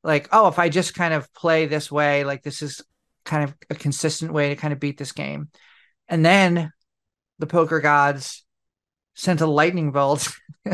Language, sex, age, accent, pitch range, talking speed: English, male, 40-59, American, 145-155 Hz, 185 wpm